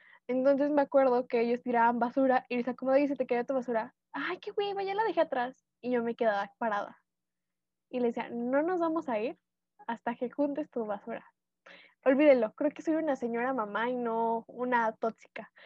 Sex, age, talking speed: female, 10-29, 200 wpm